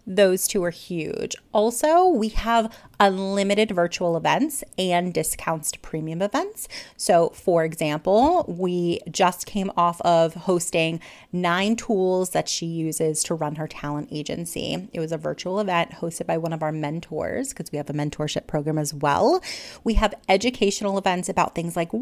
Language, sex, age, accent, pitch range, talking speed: English, female, 30-49, American, 165-220 Hz, 165 wpm